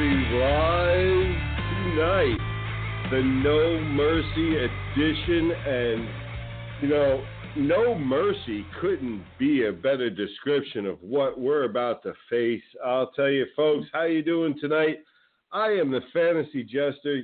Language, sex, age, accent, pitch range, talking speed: English, male, 50-69, American, 115-155 Hz, 120 wpm